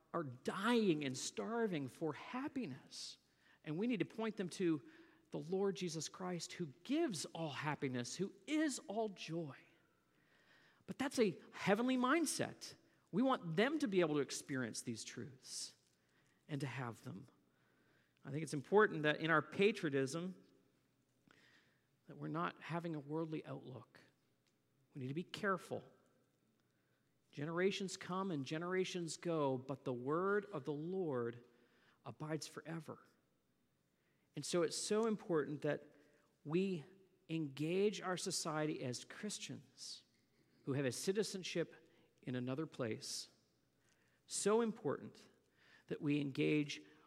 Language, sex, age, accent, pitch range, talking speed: English, male, 50-69, American, 140-195 Hz, 130 wpm